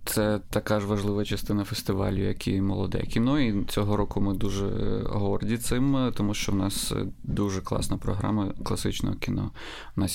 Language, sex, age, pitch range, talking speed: Russian, male, 20-39, 95-115 Hz, 165 wpm